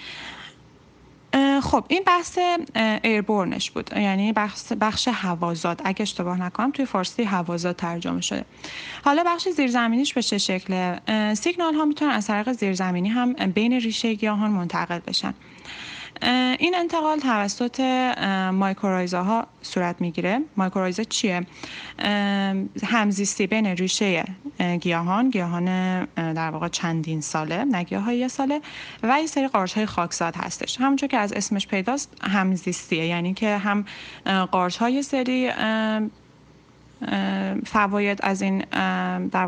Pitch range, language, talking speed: 180-235 Hz, Persian, 120 wpm